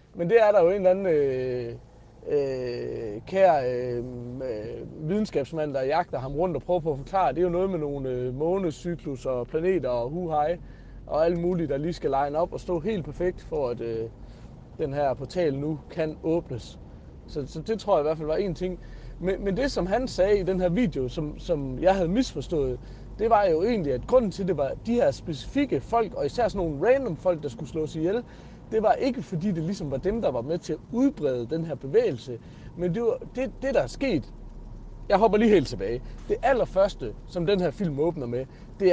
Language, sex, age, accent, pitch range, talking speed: Danish, male, 30-49, native, 135-200 Hz, 220 wpm